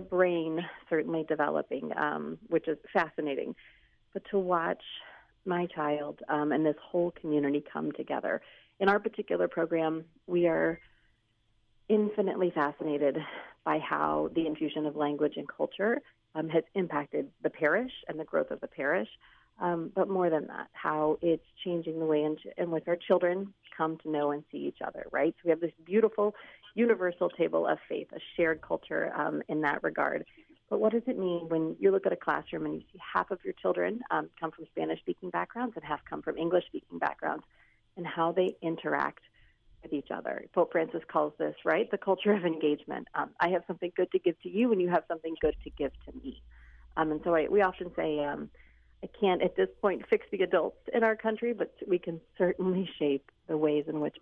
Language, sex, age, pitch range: English, female, 30-49, 150-185 Hz